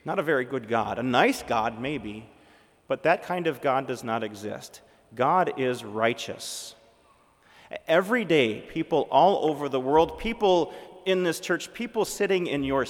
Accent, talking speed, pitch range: American, 165 wpm, 115-160 Hz